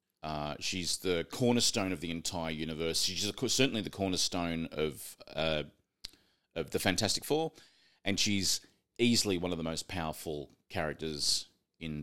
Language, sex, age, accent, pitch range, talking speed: English, male, 30-49, Australian, 85-105 Hz, 140 wpm